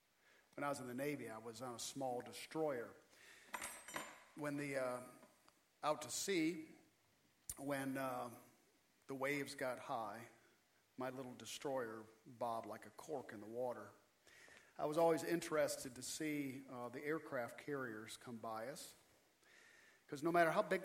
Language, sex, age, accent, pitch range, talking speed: English, male, 50-69, American, 125-150 Hz, 150 wpm